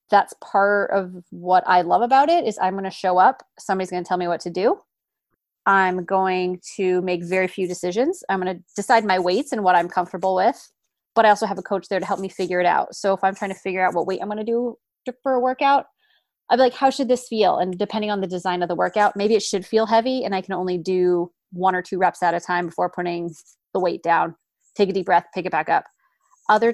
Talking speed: 260 wpm